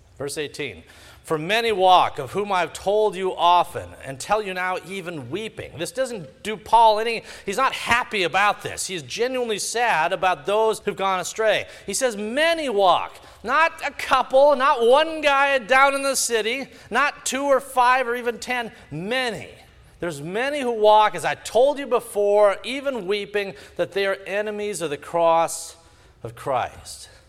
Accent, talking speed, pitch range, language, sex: American, 170 wpm, 160-255 Hz, English, male